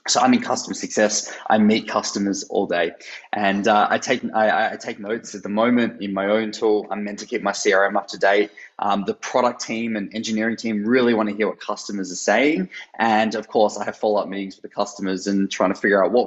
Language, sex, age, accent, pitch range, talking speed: English, male, 20-39, Australian, 100-115 Hz, 245 wpm